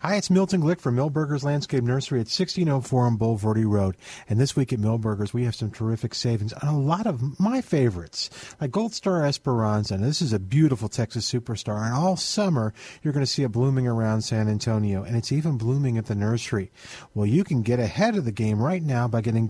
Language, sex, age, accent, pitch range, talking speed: English, male, 40-59, American, 115-155 Hz, 215 wpm